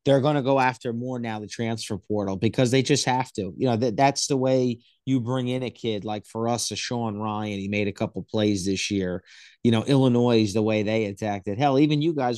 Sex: male